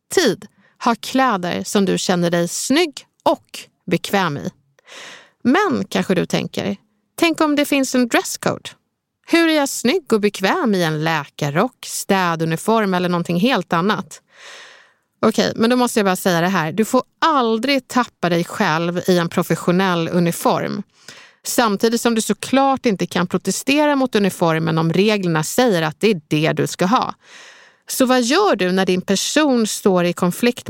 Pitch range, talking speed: 180-240 Hz, 165 wpm